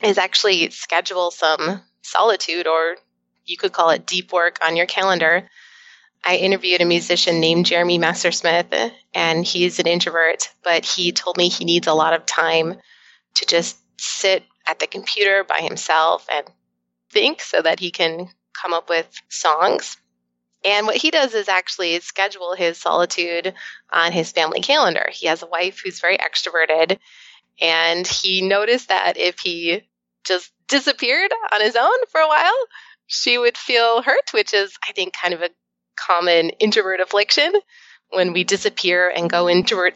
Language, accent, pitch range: English, American, 165-200 Hz